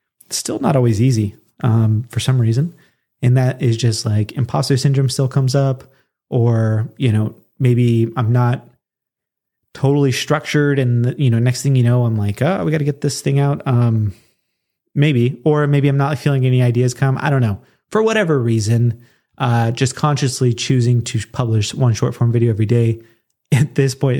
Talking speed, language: 180 wpm, English